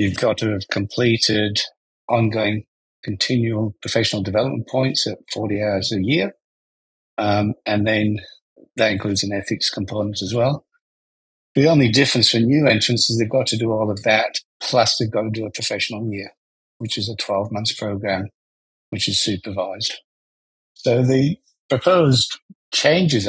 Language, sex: English, male